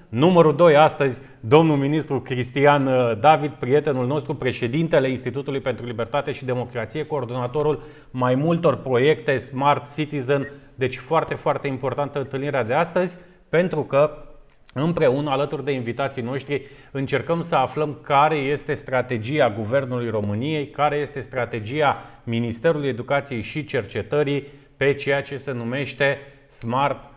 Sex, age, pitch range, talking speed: male, 30-49, 130-150 Hz, 125 wpm